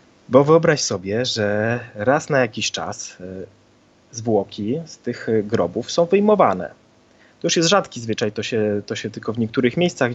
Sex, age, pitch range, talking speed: male, 30-49, 105-135 Hz, 160 wpm